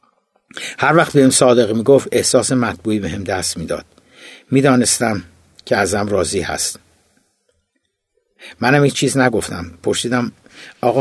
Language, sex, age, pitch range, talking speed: Persian, male, 60-79, 105-130 Hz, 120 wpm